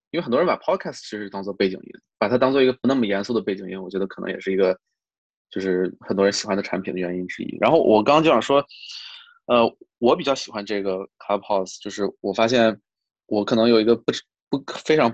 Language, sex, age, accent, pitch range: Chinese, male, 20-39, native, 100-125 Hz